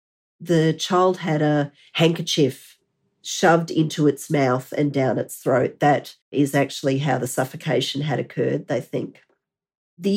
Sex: female